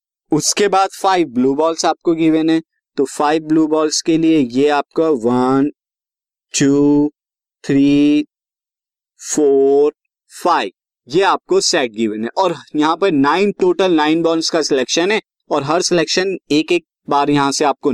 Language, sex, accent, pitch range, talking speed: Hindi, male, native, 135-165 Hz, 150 wpm